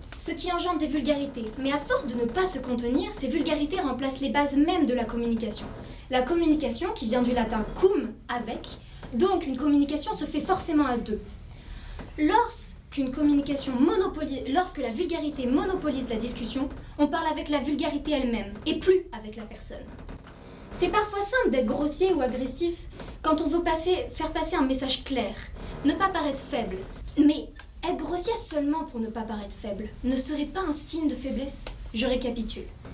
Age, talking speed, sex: 20-39, 170 wpm, female